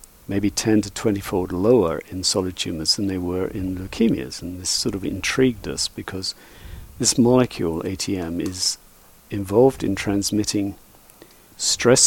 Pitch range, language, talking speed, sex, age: 95-115 Hz, English, 140 wpm, male, 50-69